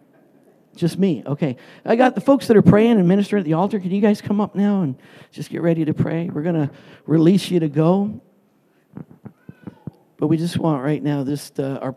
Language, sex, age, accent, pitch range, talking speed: English, male, 50-69, American, 160-205 Hz, 210 wpm